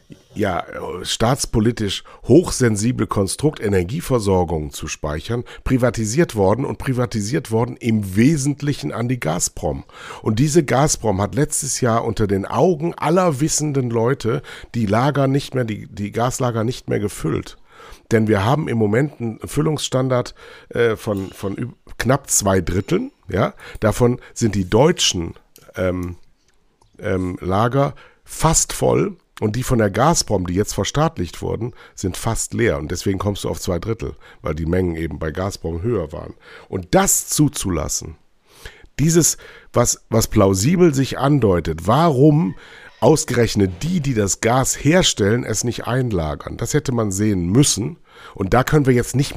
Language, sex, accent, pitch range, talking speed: German, male, German, 95-135 Hz, 145 wpm